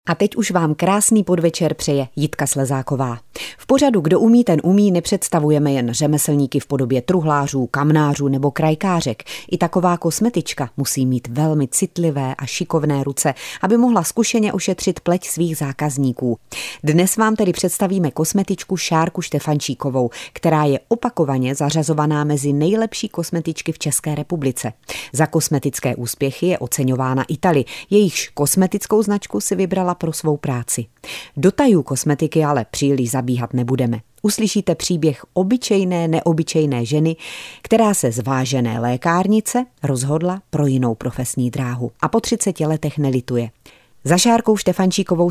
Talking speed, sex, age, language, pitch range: 135 wpm, female, 30-49, Czech, 135-185 Hz